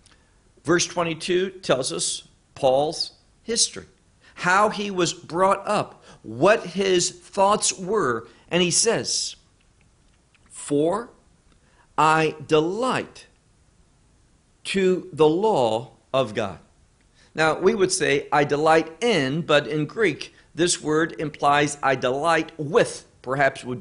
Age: 50-69